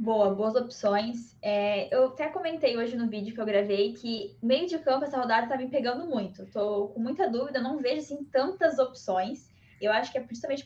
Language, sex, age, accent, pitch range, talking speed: Portuguese, female, 10-29, Brazilian, 210-260 Hz, 215 wpm